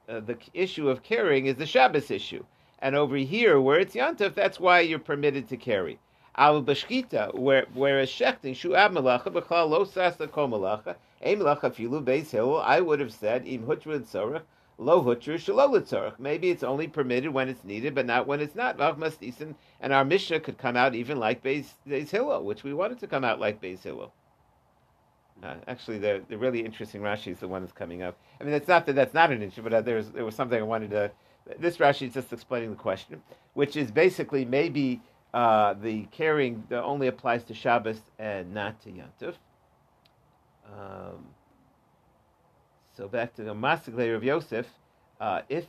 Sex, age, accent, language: male, 50-69, American, English